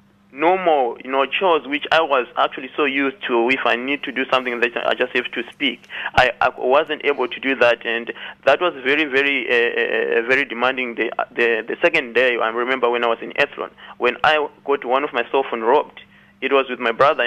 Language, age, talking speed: English, 30-49, 225 wpm